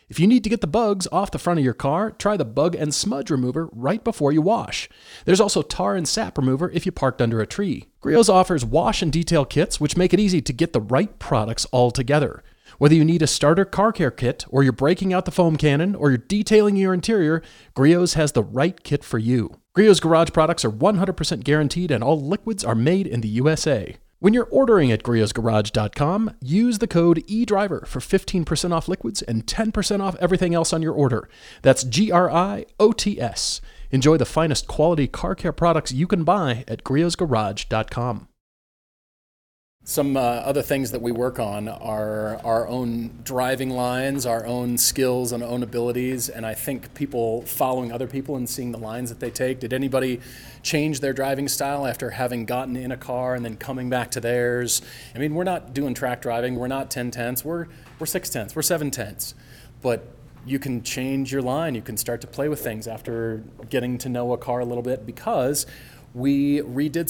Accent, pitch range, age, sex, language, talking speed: American, 120-170 Hz, 40-59, male, English, 195 wpm